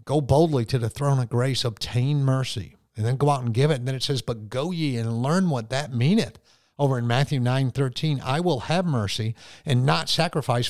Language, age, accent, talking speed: English, 50-69, American, 225 wpm